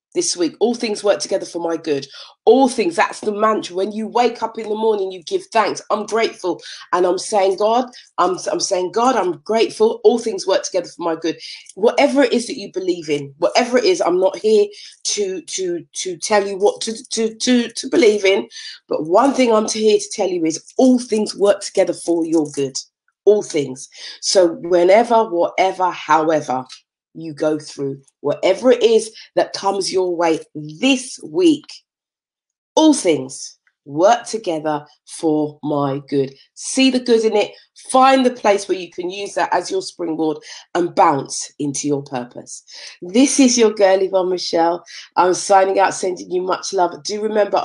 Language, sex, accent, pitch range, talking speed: English, female, British, 170-245 Hz, 180 wpm